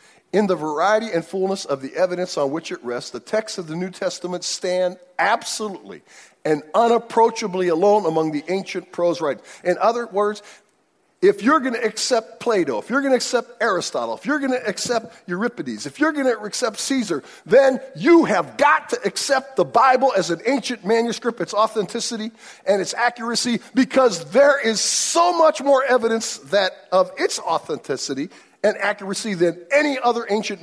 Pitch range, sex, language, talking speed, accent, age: 175-240 Hz, male, English, 175 wpm, American, 50-69